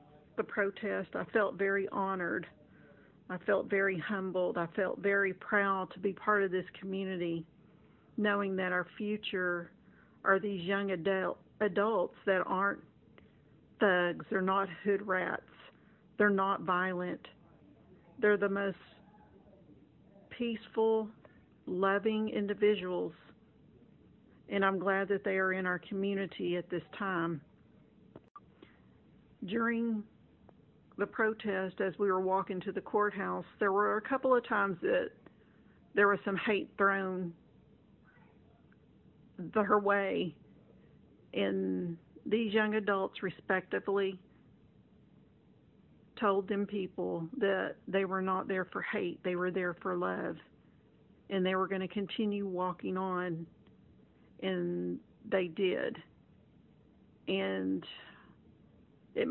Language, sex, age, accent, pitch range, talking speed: English, female, 50-69, American, 180-205 Hz, 115 wpm